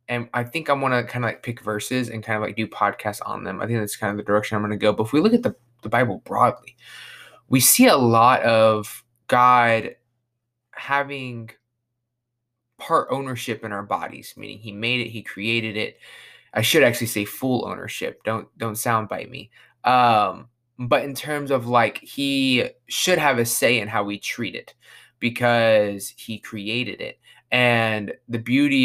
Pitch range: 110-125 Hz